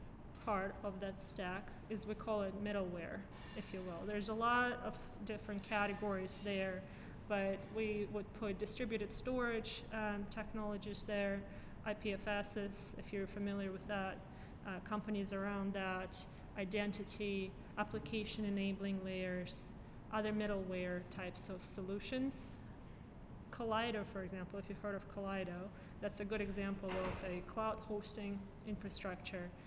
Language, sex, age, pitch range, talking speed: English, female, 20-39, 195-215 Hz, 130 wpm